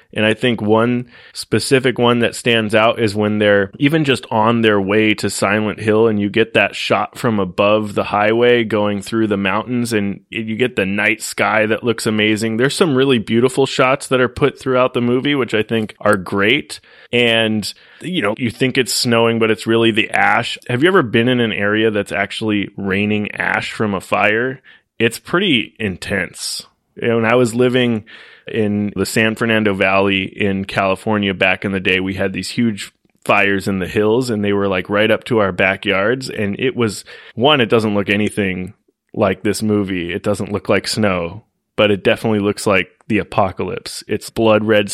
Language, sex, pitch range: English, male, 100-115 Hz